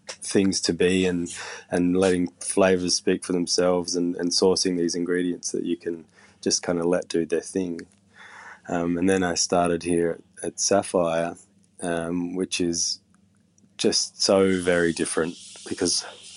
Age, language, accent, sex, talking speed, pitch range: 20-39, English, Australian, male, 150 wpm, 85-95 Hz